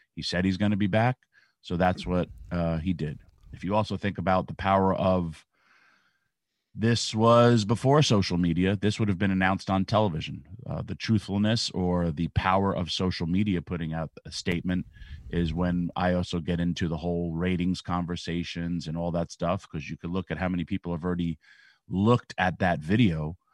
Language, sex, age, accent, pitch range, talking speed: English, male, 30-49, American, 85-105 Hz, 190 wpm